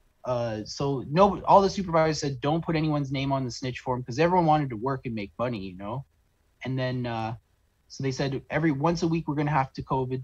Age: 20-39